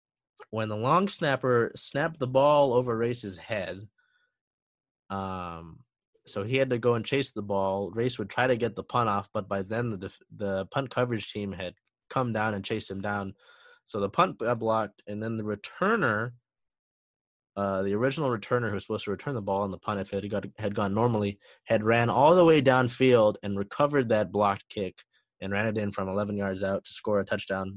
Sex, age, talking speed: male, 20-39, 205 wpm